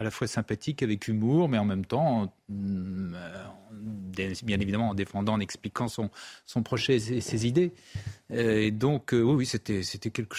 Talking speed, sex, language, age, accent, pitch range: 175 wpm, male, French, 40-59, French, 110-170 Hz